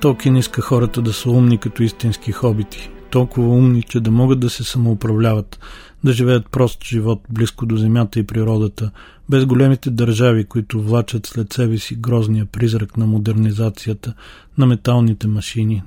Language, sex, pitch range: Bulgarian, male, 110-125 Hz